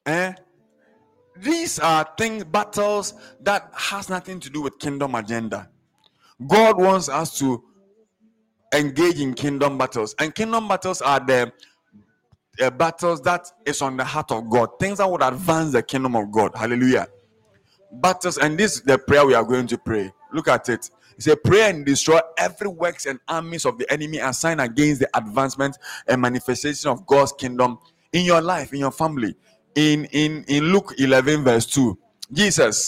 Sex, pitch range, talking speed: male, 130-185 Hz, 170 wpm